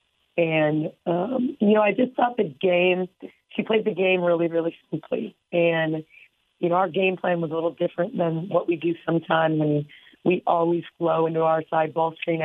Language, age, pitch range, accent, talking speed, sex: English, 40-59, 160-180 Hz, American, 195 wpm, female